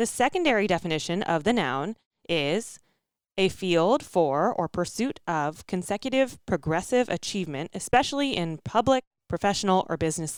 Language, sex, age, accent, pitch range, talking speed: English, female, 20-39, American, 165-240 Hz, 125 wpm